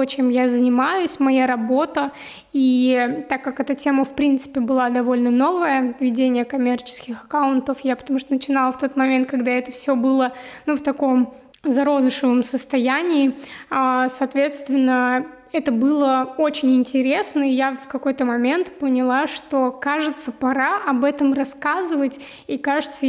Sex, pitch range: female, 255-280 Hz